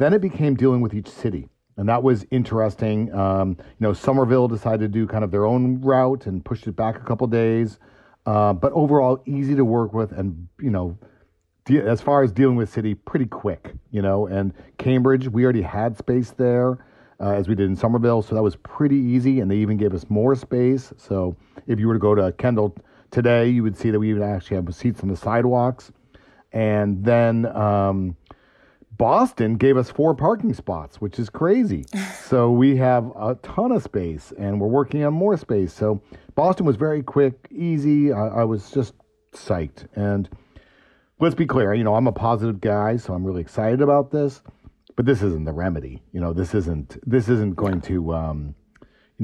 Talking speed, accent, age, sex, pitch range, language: 200 wpm, American, 40-59, male, 100-130 Hz, English